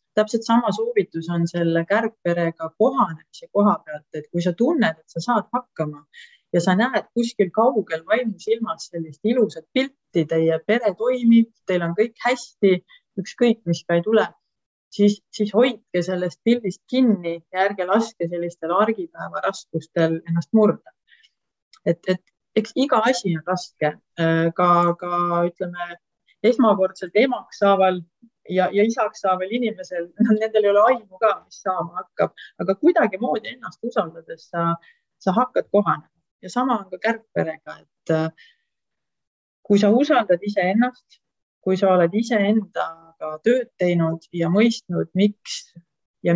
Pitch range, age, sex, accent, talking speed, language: 170-225 Hz, 30-49, female, Danish, 140 wpm, English